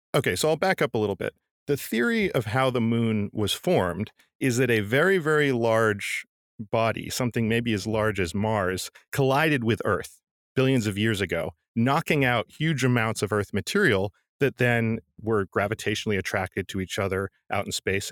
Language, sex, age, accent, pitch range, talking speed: English, male, 40-59, American, 105-130 Hz, 180 wpm